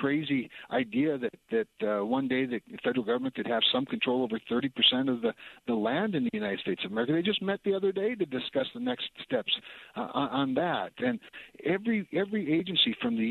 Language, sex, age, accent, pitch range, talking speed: English, male, 60-79, American, 135-225 Hz, 210 wpm